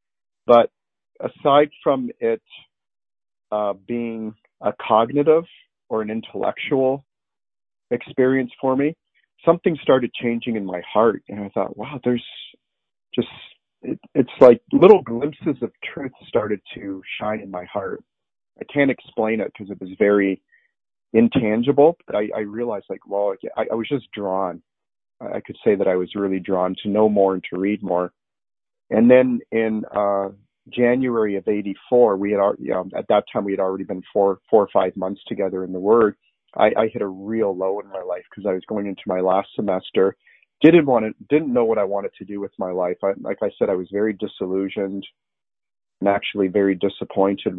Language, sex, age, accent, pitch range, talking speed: English, male, 40-59, American, 95-120 Hz, 180 wpm